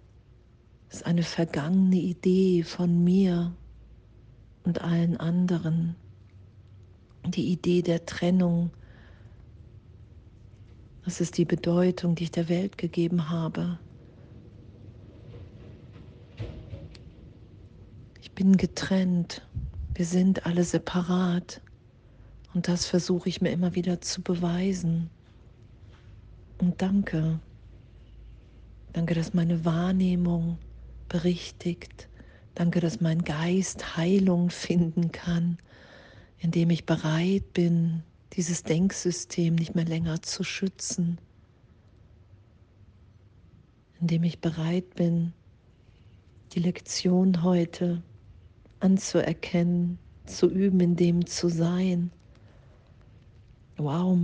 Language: German